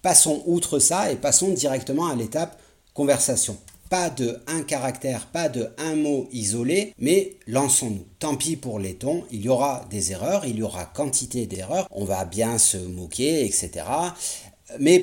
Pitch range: 95-125 Hz